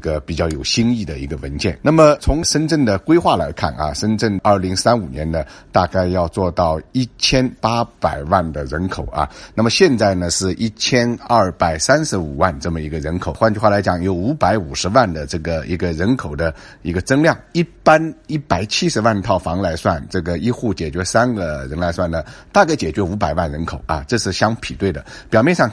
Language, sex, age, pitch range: Chinese, male, 50-69, 80-110 Hz